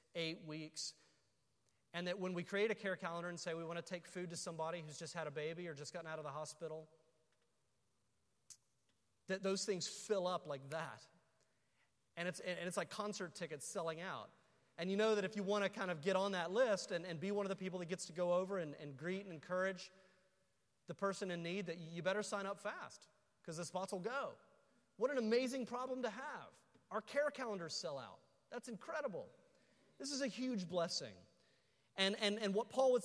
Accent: American